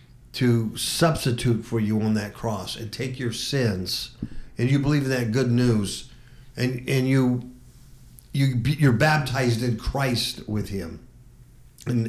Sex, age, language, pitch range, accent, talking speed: male, 50-69, English, 120-145 Hz, American, 145 wpm